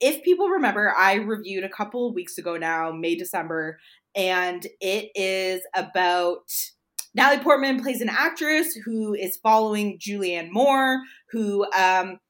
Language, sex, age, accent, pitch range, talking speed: English, female, 20-39, American, 180-245 Hz, 135 wpm